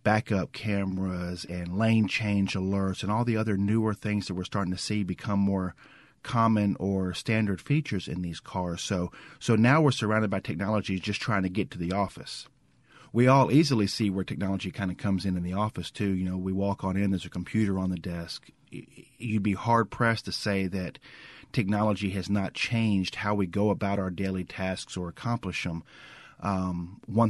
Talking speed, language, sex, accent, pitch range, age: 195 wpm, English, male, American, 95-110 Hz, 40-59